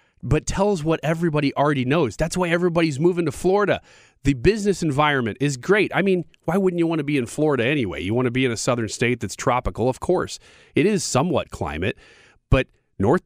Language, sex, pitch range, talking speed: English, male, 115-160 Hz, 210 wpm